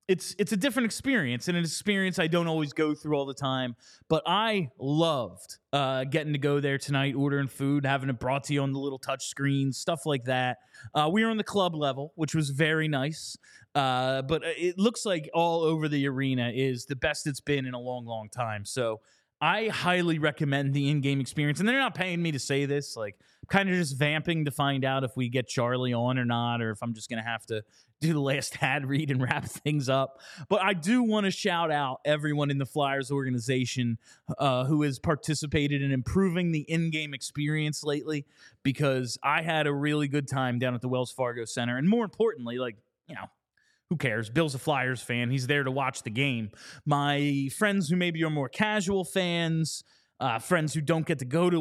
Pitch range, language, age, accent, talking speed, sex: 130-160 Hz, English, 20-39, American, 215 wpm, male